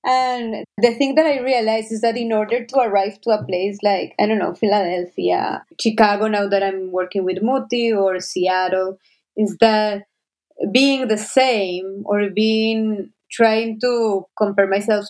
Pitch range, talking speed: 185-225 Hz, 160 wpm